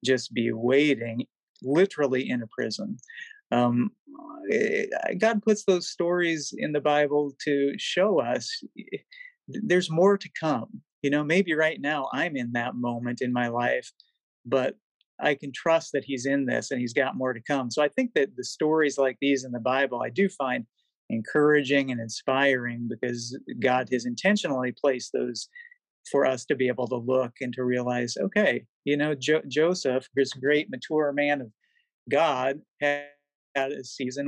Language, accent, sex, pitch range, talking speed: English, American, male, 125-155 Hz, 165 wpm